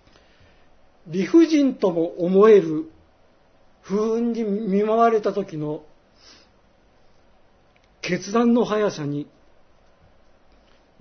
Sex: male